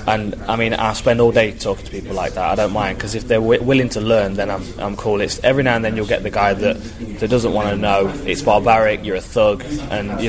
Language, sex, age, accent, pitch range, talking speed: English, male, 20-39, British, 100-115 Hz, 280 wpm